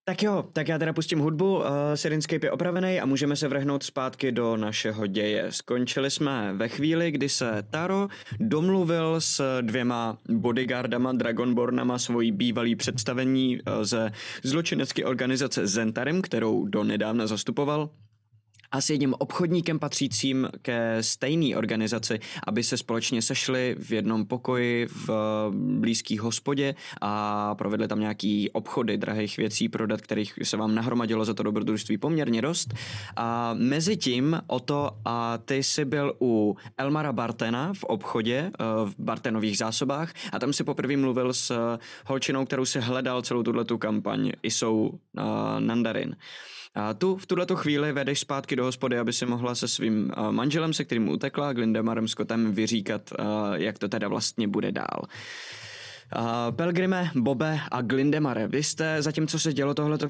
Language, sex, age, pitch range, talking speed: Czech, male, 20-39, 115-145 Hz, 150 wpm